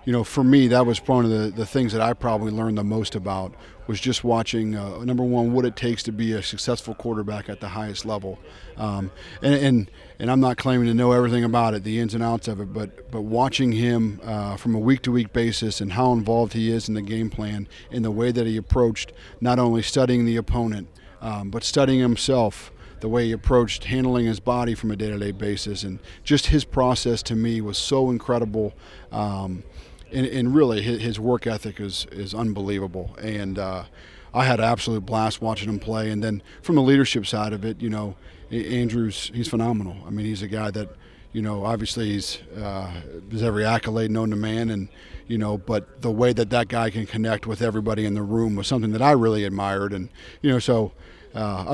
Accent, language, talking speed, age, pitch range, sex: American, English, 210 wpm, 40-59, 105-120 Hz, male